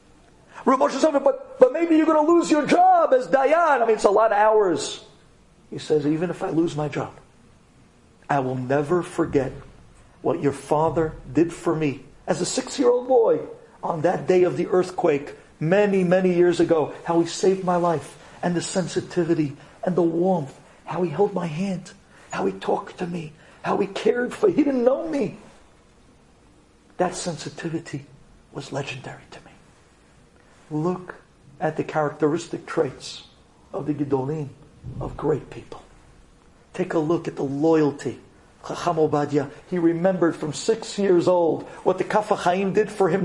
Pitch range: 155-215 Hz